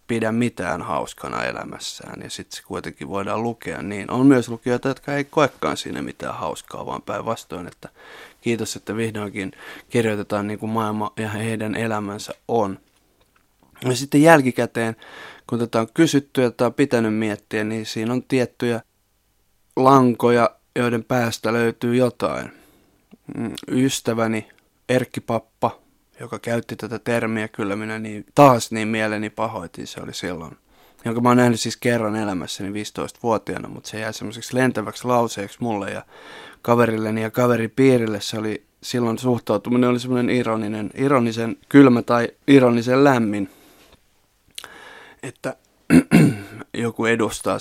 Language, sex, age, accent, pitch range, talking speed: Finnish, male, 20-39, native, 110-125 Hz, 130 wpm